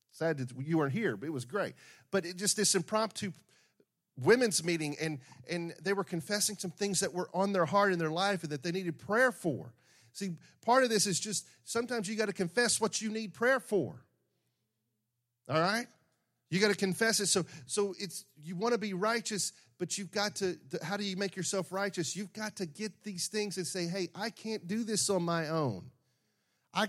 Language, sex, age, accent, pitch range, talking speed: English, male, 40-59, American, 165-210 Hz, 210 wpm